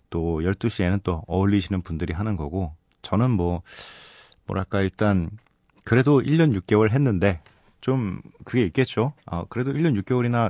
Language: Korean